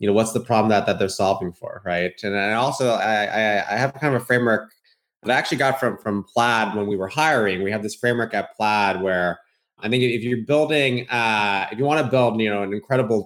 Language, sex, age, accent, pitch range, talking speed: English, male, 20-39, American, 105-120 Hz, 250 wpm